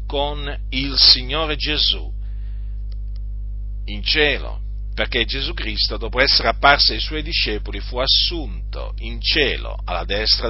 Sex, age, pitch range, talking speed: male, 50-69, 100-155 Hz, 120 wpm